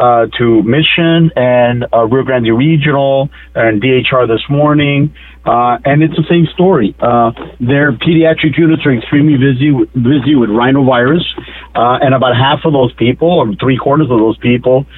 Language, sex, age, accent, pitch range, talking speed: English, male, 50-69, American, 120-150 Hz, 165 wpm